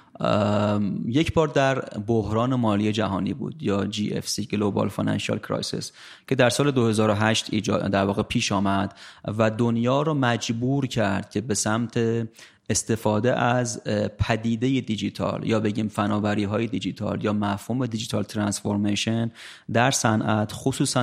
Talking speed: 125 wpm